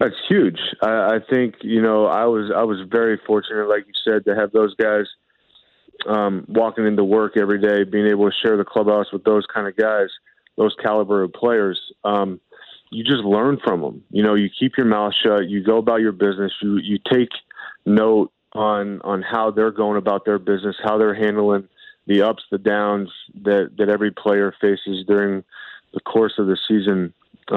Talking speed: 195 wpm